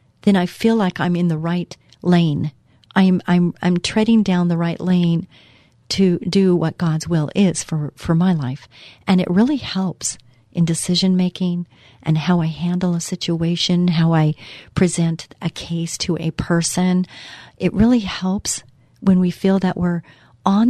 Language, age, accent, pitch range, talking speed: English, 40-59, American, 155-185 Hz, 165 wpm